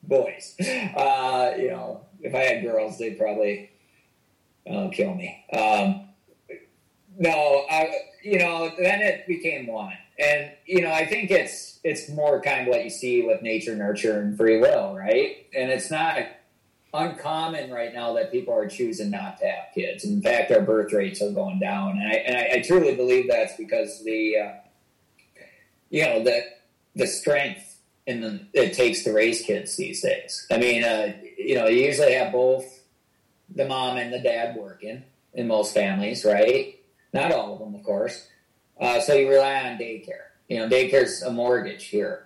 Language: English